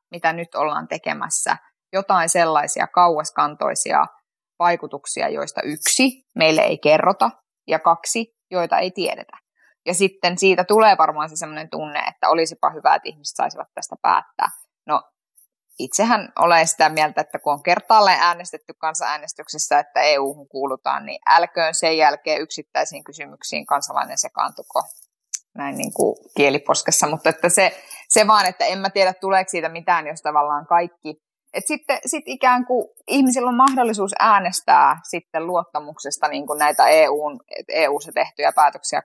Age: 20-39